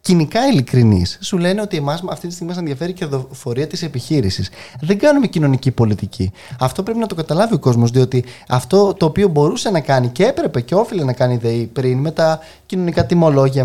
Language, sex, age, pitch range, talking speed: Greek, male, 20-39, 130-175 Hz, 200 wpm